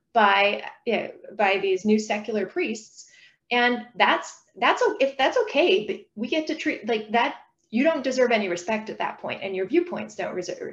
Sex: female